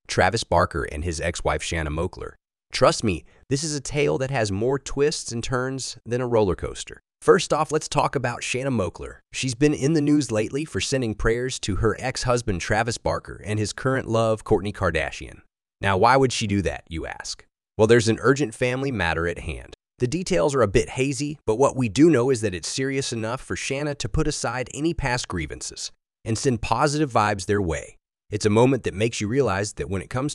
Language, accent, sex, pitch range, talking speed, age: English, American, male, 105-135 Hz, 210 wpm, 30-49